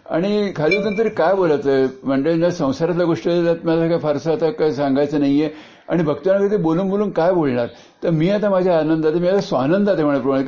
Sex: male